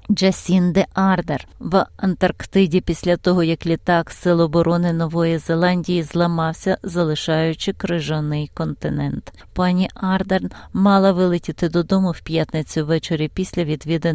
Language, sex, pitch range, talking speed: Ukrainian, female, 165-200 Hz, 110 wpm